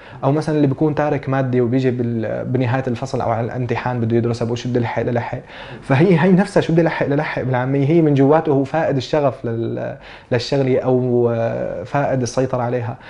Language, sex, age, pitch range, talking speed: Arabic, male, 20-39, 120-150 Hz, 160 wpm